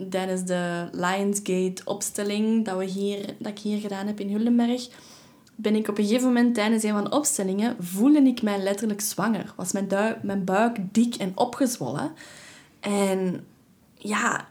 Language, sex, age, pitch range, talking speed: Dutch, female, 10-29, 195-235 Hz, 160 wpm